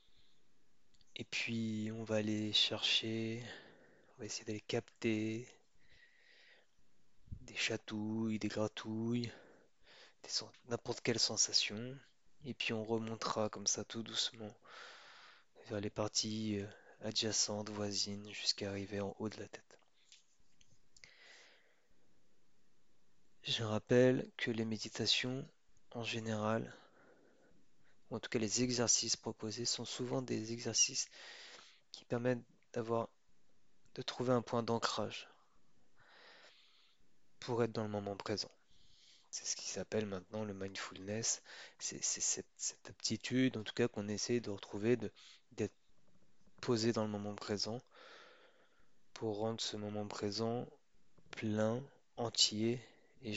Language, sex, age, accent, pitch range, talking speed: French, male, 20-39, French, 105-120 Hz, 115 wpm